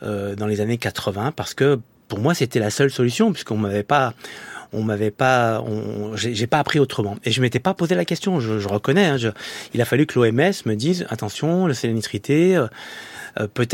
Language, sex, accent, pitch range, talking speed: French, male, French, 110-135 Hz, 220 wpm